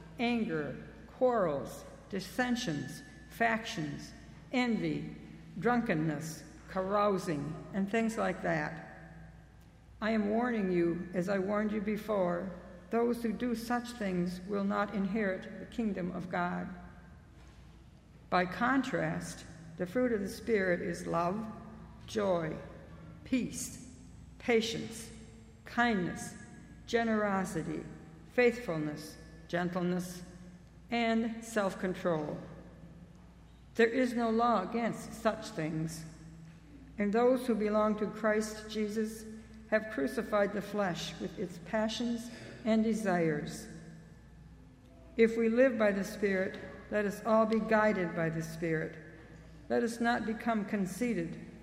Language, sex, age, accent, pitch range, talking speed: English, female, 60-79, American, 170-220 Hz, 105 wpm